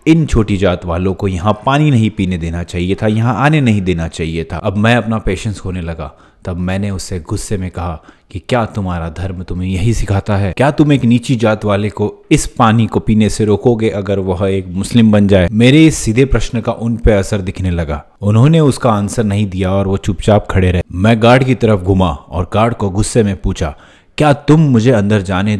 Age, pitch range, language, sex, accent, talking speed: 30-49, 90-115 Hz, Hindi, male, native, 215 wpm